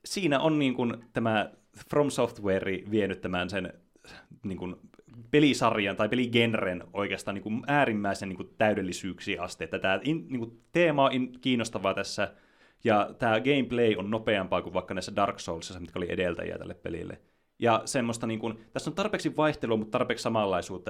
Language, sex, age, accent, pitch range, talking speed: Finnish, male, 30-49, native, 95-120 Hz, 160 wpm